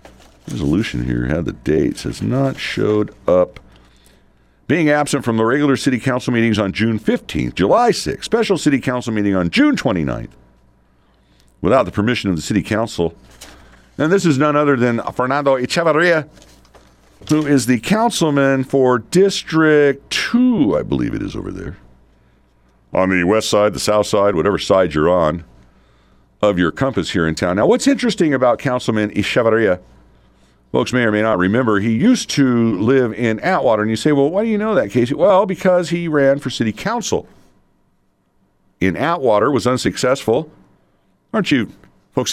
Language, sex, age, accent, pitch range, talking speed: English, male, 50-69, American, 90-135 Hz, 165 wpm